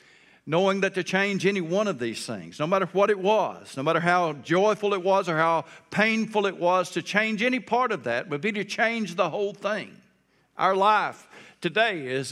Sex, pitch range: male, 135-190 Hz